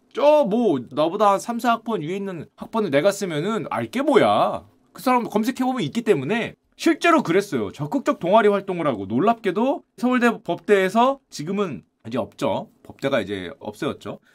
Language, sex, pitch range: Korean, male, 195-275 Hz